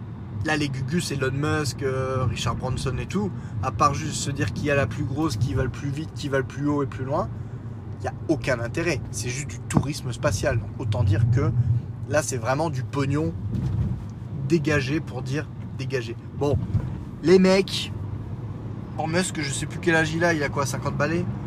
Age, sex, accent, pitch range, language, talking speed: 20-39, male, French, 115-150 Hz, French, 205 wpm